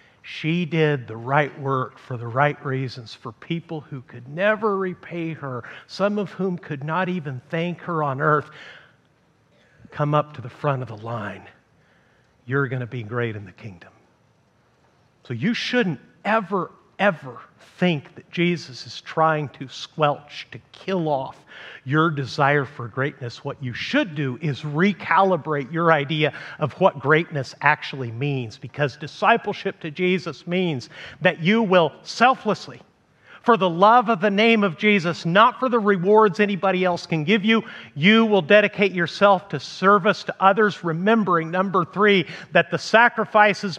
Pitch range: 145-205 Hz